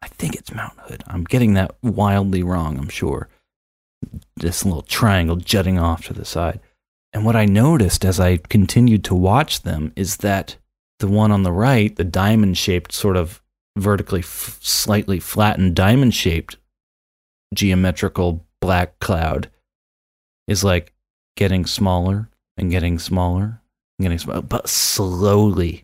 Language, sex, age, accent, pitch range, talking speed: English, male, 30-49, American, 90-110 Hz, 140 wpm